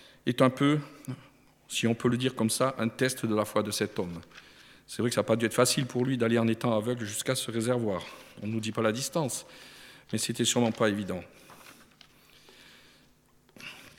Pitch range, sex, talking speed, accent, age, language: 115-155 Hz, male, 205 wpm, French, 50-69, French